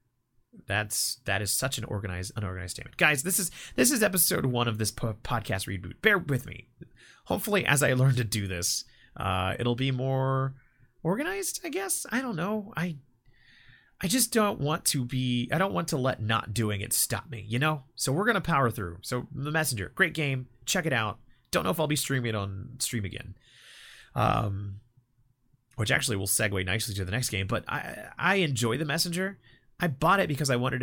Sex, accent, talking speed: male, American, 200 wpm